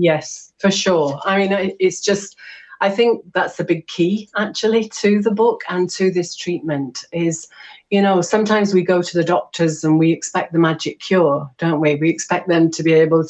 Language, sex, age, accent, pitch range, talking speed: English, female, 40-59, British, 155-190 Hz, 200 wpm